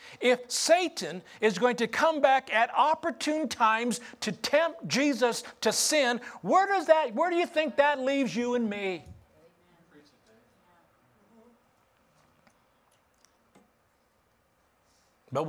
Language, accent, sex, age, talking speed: English, American, male, 60-79, 110 wpm